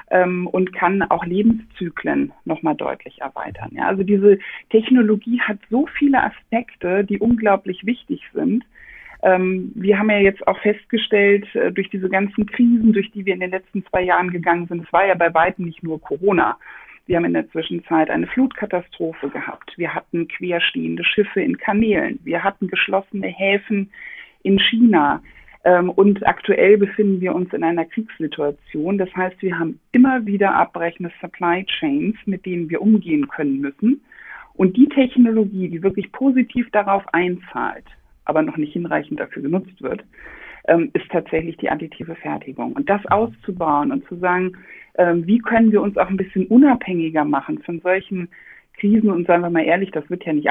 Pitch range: 175-220 Hz